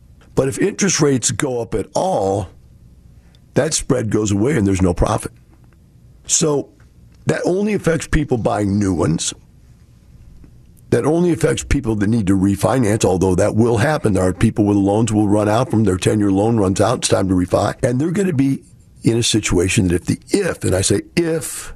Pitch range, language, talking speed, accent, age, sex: 90-115 Hz, English, 195 wpm, American, 50-69, male